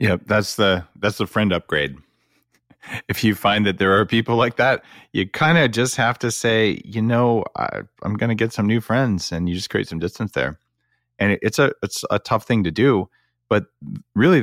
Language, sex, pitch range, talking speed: English, male, 80-105 Hz, 215 wpm